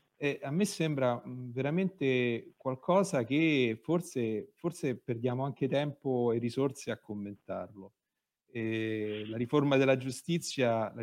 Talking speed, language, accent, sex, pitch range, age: 115 wpm, Italian, native, male, 105-130 Hz, 40-59